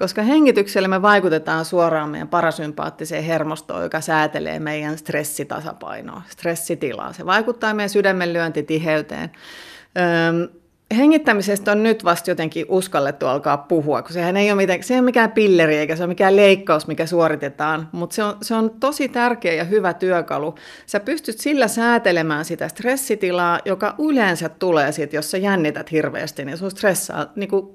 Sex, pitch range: female, 160-215 Hz